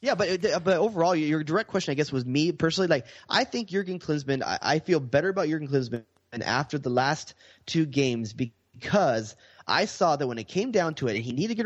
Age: 20-39